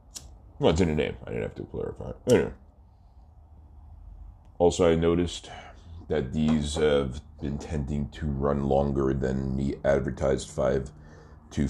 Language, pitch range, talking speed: English, 75-95 Hz, 140 wpm